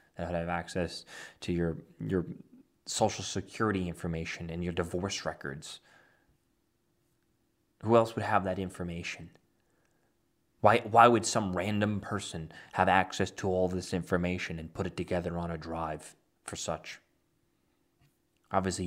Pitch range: 95-140 Hz